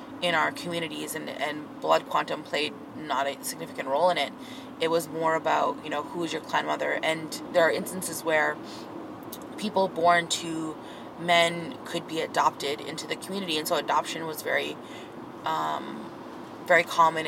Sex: female